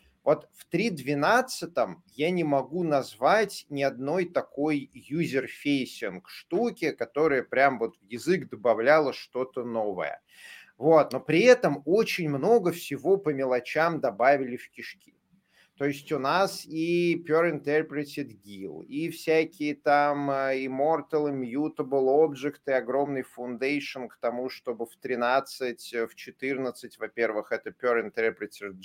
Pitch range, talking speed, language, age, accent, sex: 115-150 Hz, 125 wpm, Russian, 30-49, native, male